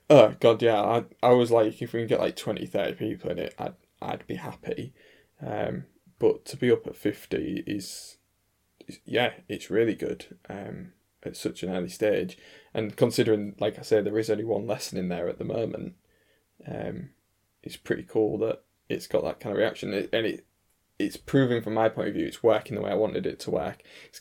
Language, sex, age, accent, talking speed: English, male, 10-29, British, 210 wpm